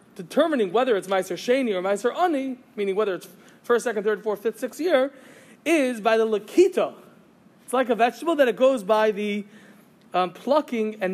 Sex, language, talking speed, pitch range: male, English, 185 wpm, 205-275 Hz